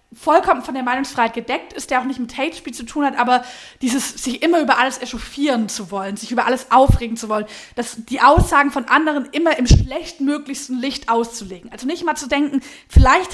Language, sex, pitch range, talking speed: German, female, 235-295 Hz, 200 wpm